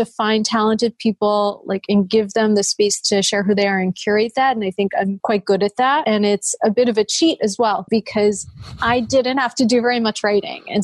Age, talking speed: 30-49, 250 wpm